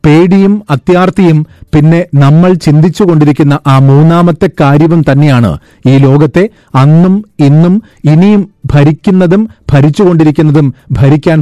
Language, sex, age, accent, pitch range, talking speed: Malayalam, male, 40-59, native, 140-175 Hz, 90 wpm